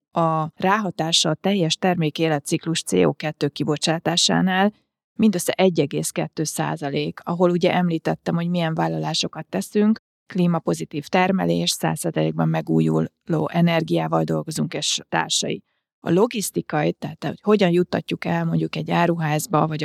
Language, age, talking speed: Hungarian, 30-49, 110 wpm